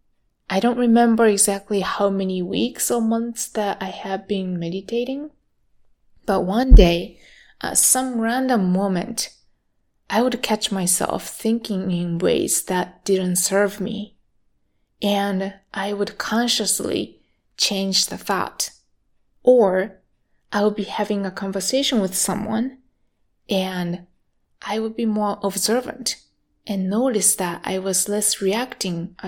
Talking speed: 125 wpm